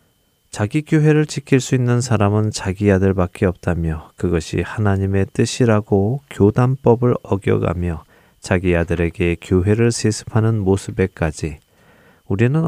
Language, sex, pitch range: Korean, male, 90-120 Hz